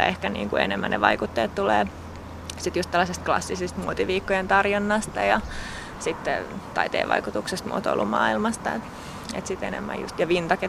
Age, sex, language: 20-39, female, Finnish